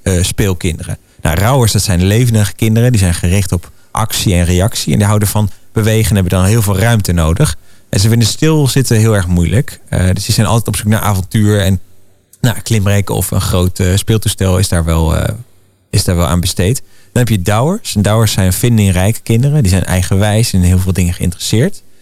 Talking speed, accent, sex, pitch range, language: 205 wpm, Dutch, male, 90-110 Hz, Dutch